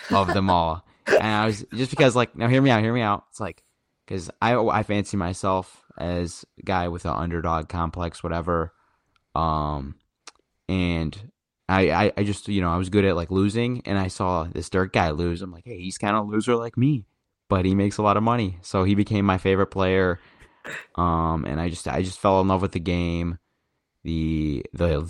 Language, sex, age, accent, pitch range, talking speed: English, male, 20-39, American, 85-100 Hz, 210 wpm